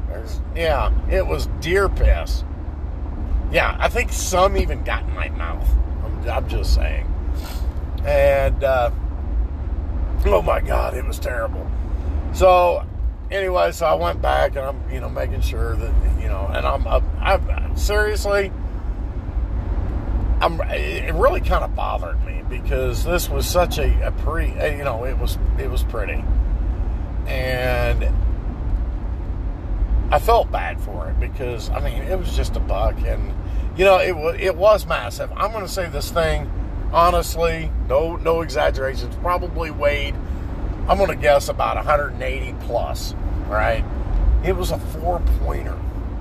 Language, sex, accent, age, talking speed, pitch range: English, male, American, 50-69, 145 wpm, 70-90 Hz